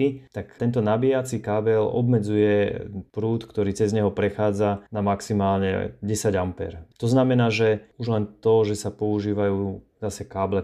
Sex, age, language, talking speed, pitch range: male, 30-49, Slovak, 135 wpm, 100-115 Hz